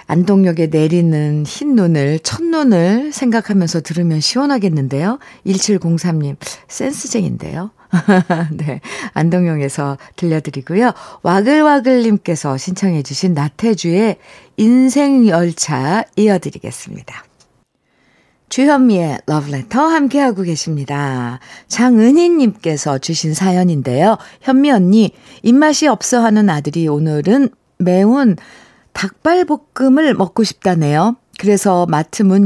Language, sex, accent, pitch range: Korean, female, native, 165-235 Hz